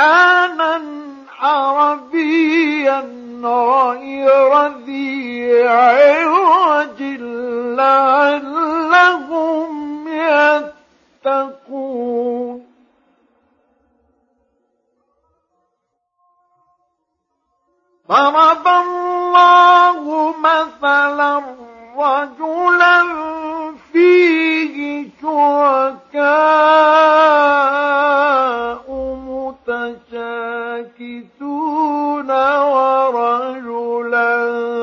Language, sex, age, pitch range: Arabic, male, 50-69, 265-320 Hz